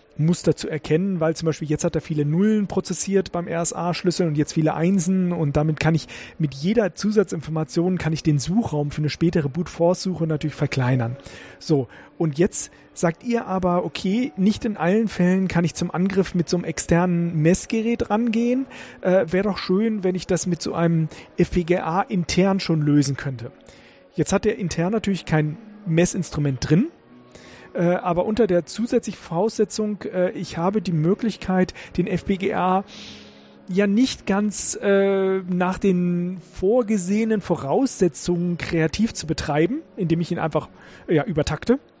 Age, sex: 40-59, male